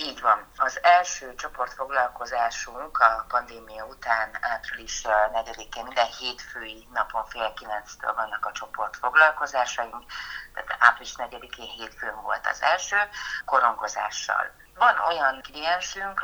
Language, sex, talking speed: Hungarian, female, 105 wpm